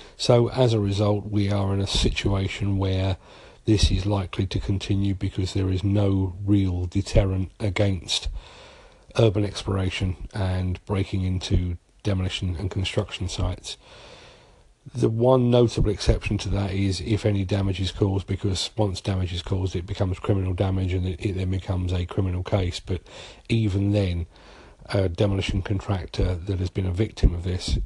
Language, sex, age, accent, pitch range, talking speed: English, male, 40-59, British, 95-105 Hz, 155 wpm